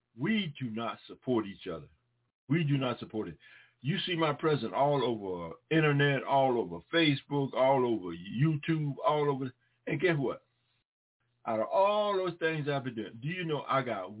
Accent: American